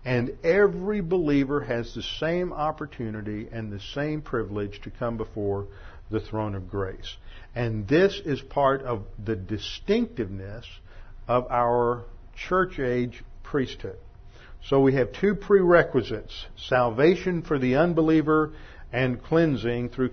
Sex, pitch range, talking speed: male, 110-135 Hz, 120 wpm